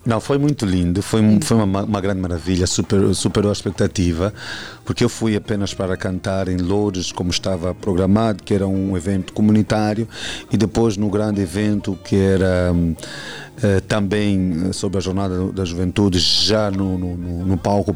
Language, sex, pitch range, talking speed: Portuguese, male, 95-110 Hz, 155 wpm